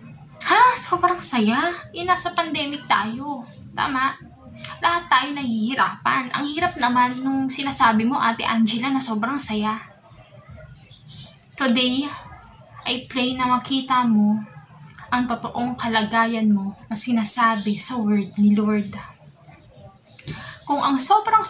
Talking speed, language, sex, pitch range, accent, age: 115 wpm, English, female, 215-265 Hz, Filipino, 10-29